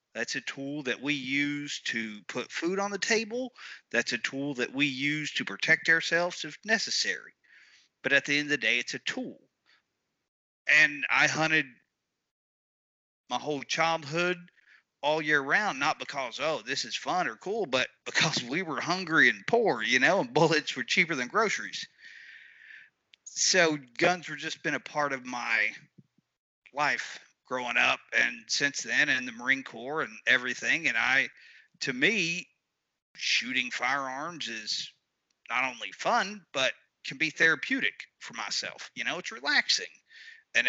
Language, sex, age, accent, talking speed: English, male, 40-59, American, 160 wpm